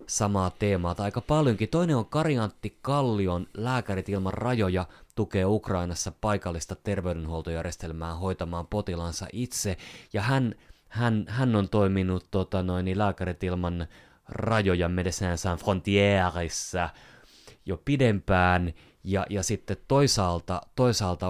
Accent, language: native, Finnish